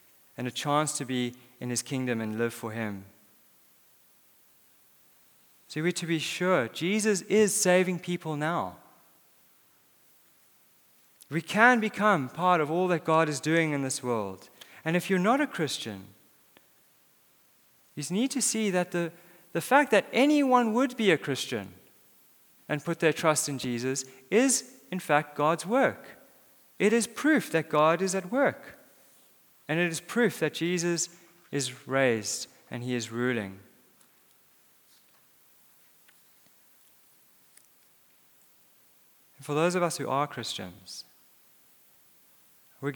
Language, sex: English, male